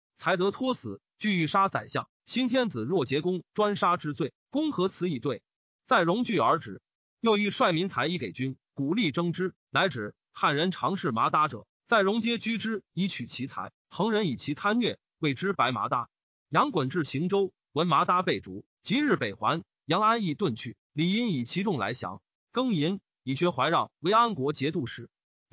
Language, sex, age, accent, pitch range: Chinese, male, 30-49, native, 145-205 Hz